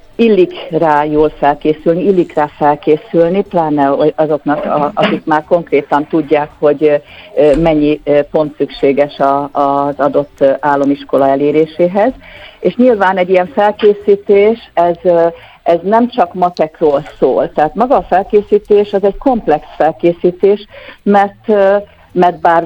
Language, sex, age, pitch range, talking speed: Hungarian, female, 50-69, 150-185 Hz, 115 wpm